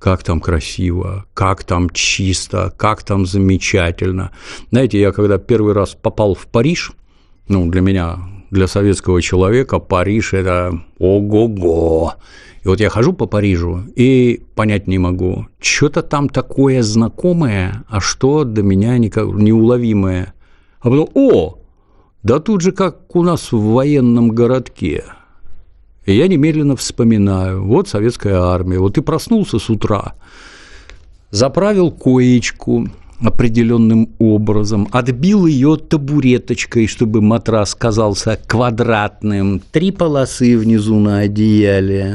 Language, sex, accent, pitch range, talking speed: Russian, male, native, 95-125 Hz, 120 wpm